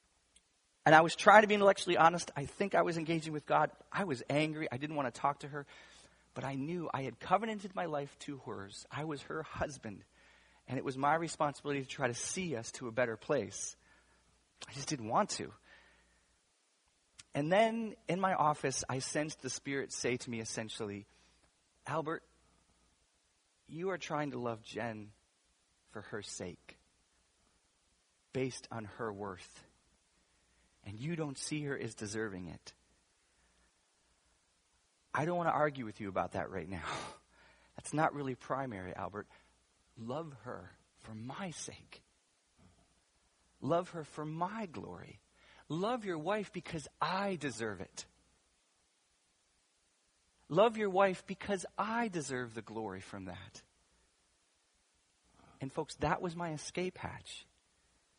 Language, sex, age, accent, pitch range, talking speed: English, male, 30-49, American, 100-160 Hz, 145 wpm